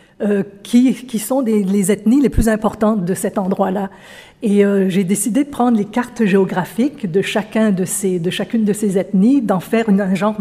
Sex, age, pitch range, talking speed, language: female, 50-69, 200-235 Hz, 200 wpm, French